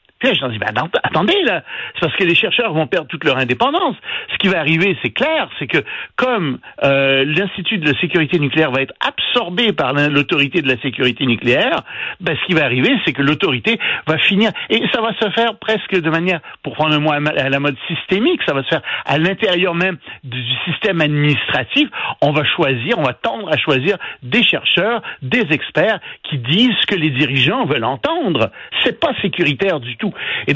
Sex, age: male, 60-79